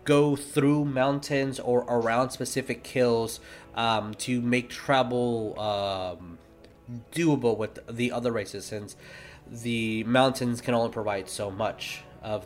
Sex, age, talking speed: male, 20-39, 125 wpm